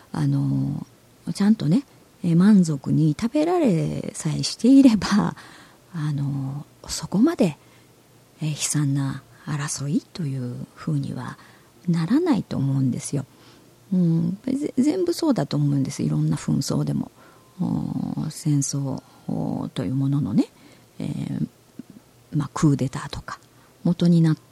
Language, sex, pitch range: Japanese, female, 140-185 Hz